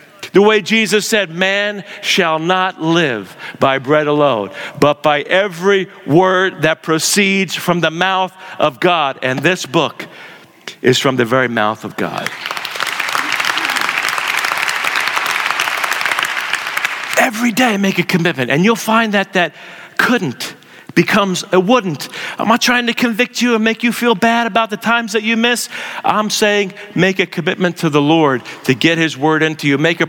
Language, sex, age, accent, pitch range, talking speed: English, male, 50-69, American, 165-200 Hz, 160 wpm